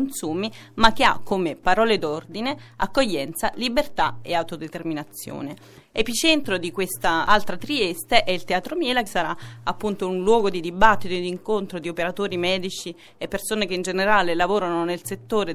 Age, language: 30-49, Italian